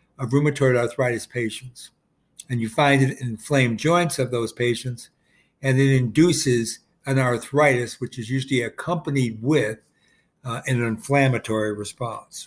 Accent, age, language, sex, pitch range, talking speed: American, 60-79, English, male, 120-145 Hz, 135 wpm